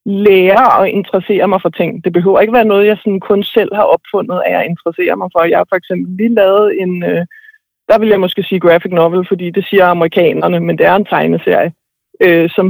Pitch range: 180-220 Hz